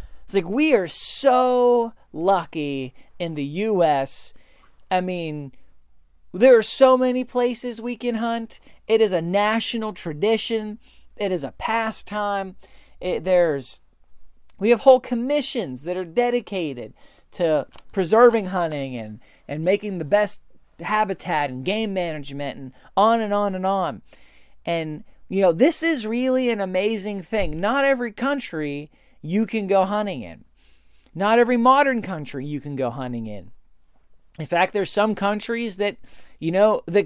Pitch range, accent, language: 160-225 Hz, American, English